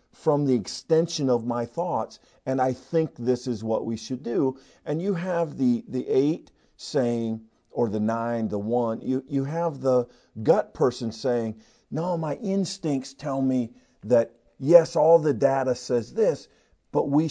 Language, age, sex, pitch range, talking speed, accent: English, 50-69, male, 115-150 Hz, 165 wpm, American